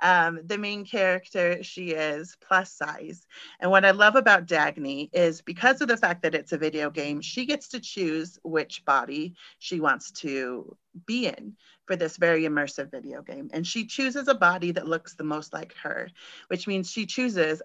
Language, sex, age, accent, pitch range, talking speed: English, female, 40-59, American, 170-220 Hz, 190 wpm